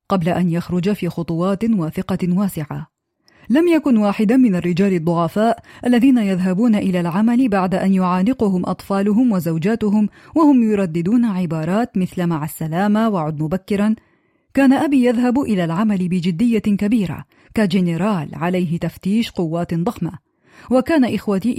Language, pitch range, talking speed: Arabic, 180-240 Hz, 120 wpm